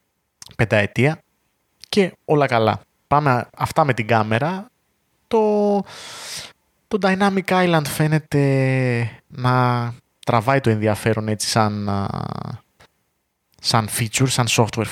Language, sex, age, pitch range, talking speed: Greek, male, 20-39, 110-145 Hz, 95 wpm